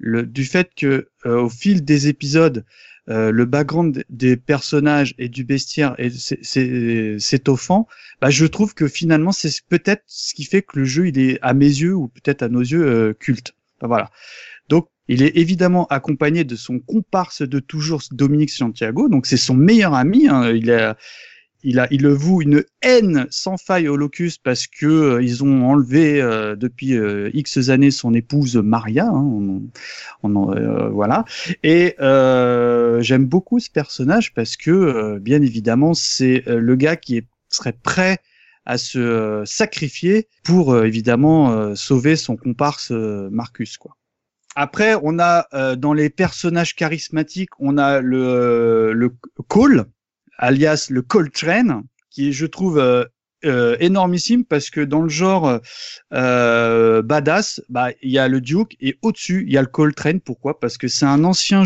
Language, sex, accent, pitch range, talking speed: French, male, French, 125-165 Hz, 180 wpm